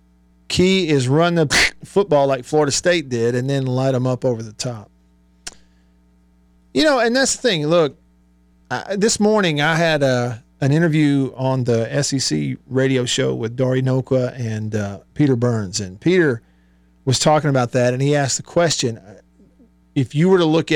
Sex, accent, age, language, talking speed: male, American, 40-59, English, 170 wpm